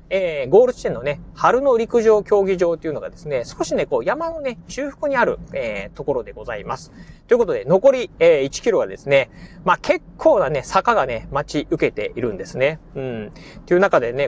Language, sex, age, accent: Japanese, male, 30-49, native